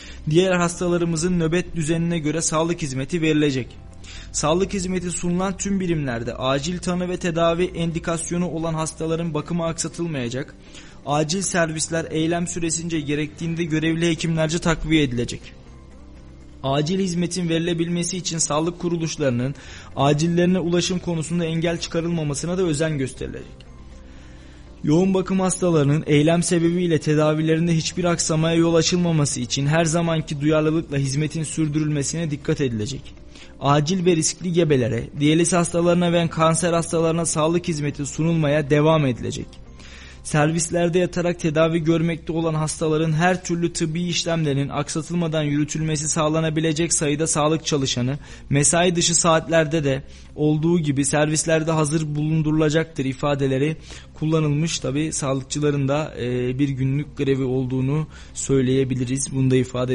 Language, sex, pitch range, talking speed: Turkish, male, 140-170 Hz, 115 wpm